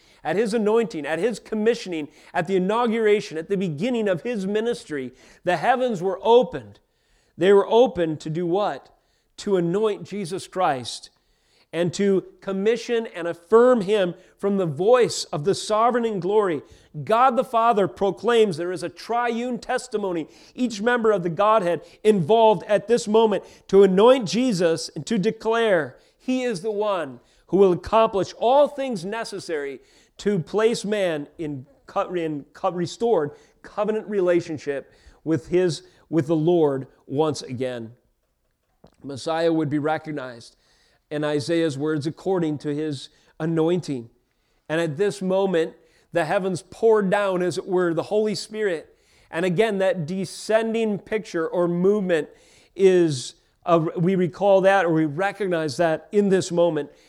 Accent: American